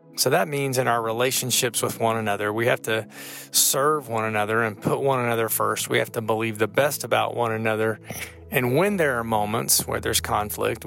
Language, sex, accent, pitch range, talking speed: English, male, American, 105-120 Hz, 205 wpm